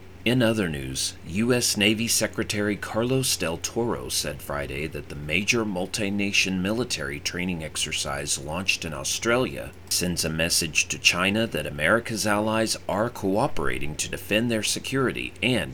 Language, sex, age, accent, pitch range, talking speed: English, male, 40-59, American, 80-105 Hz, 135 wpm